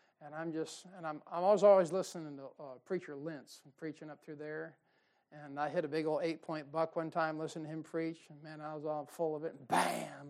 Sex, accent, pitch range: male, American, 155-185 Hz